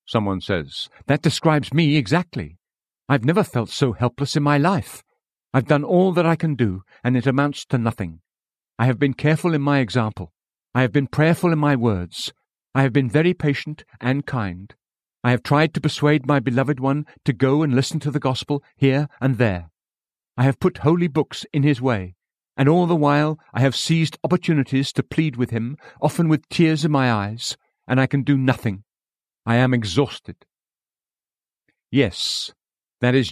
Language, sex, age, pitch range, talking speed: English, male, 50-69, 120-150 Hz, 185 wpm